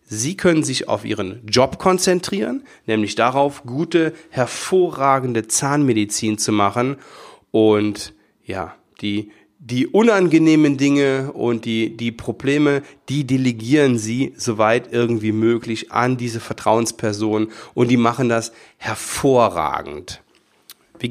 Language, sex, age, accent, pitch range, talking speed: German, male, 40-59, German, 110-135 Hz, 110 wpm